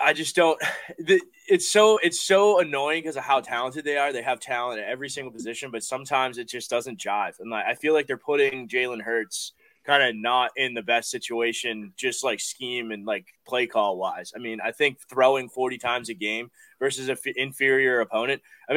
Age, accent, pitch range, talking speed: 20-39, American, 120-150 Hz, 210 wpm